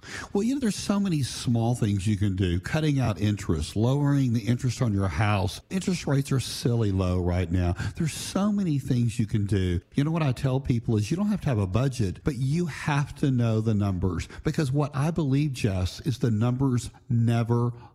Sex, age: male, 50-69